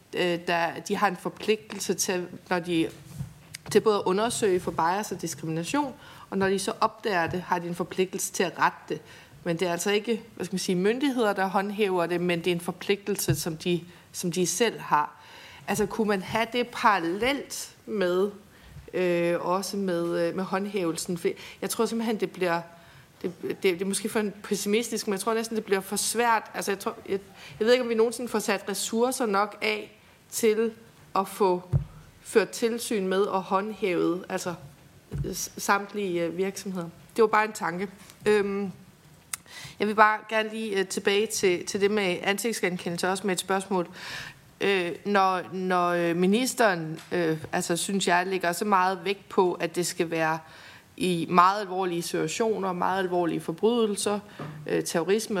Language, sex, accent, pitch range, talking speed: Danish, female, native, 175-210 Hz, 170 wpm